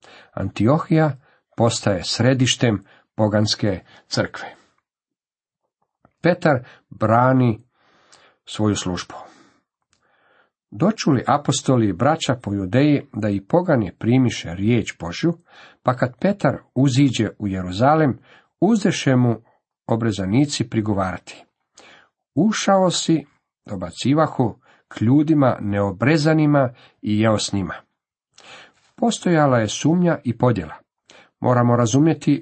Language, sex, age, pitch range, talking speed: Croatian, male, 50-69, 105-145 Hz, 85 wpm